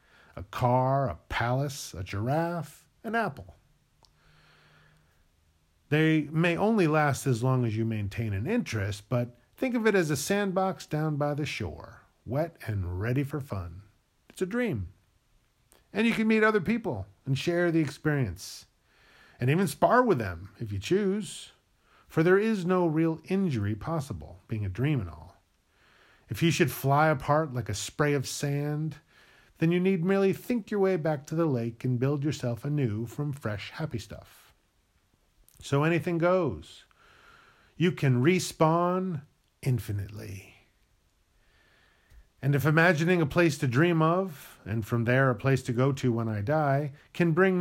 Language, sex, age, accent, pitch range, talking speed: English, male, 40-59, American, 110-170 Hz, 160 wpm